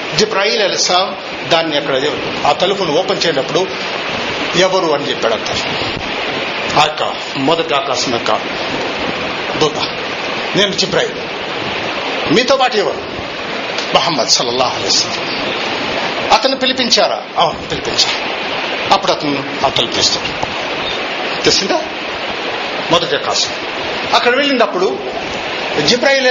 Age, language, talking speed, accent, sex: 50-69, Telugu, 95 wpm, native, male